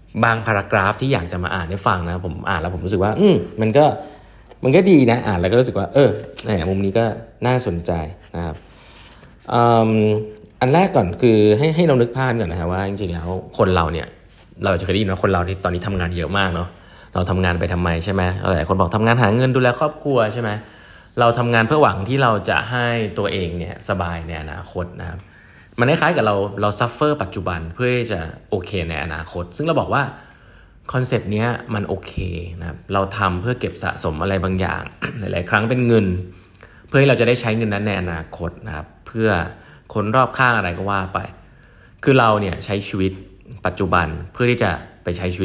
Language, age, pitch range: Thai, 20-39, 90-115 Hz